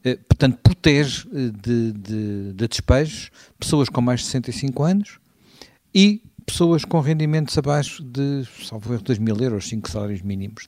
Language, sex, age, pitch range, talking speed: Portuguese, male, 50-69, 110-140 Hz, 140 wpm